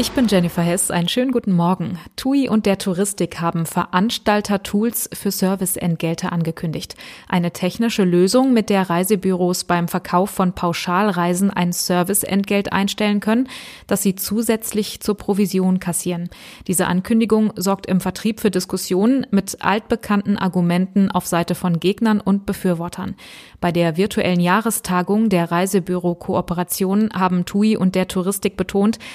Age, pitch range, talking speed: 20-39, 180-210 Hz, 135 wpm